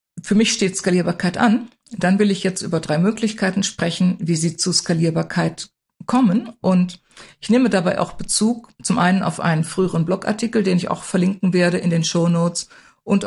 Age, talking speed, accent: 50-69, 175 wpm, German